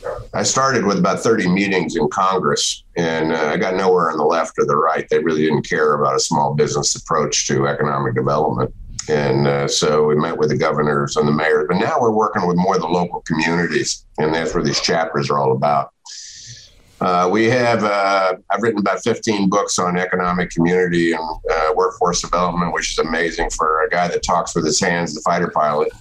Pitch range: 75-90 Hz